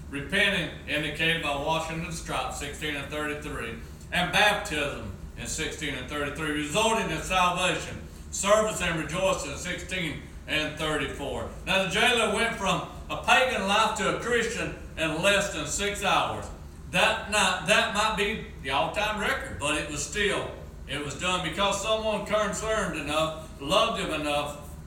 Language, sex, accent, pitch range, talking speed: English, male, American, 150-205 Hz, 150 wpm